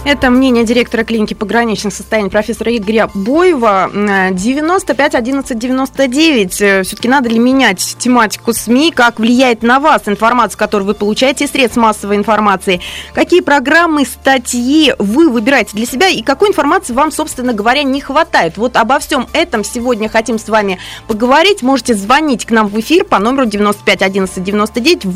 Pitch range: 215-295 Hz